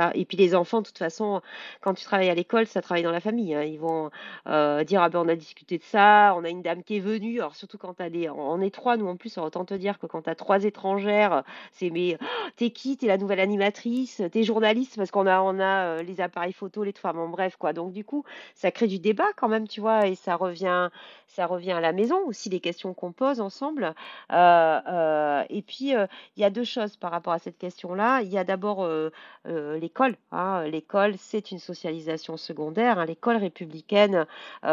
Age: 40-59